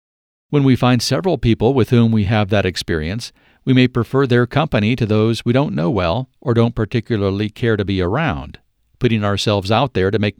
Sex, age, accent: male, 50-69, American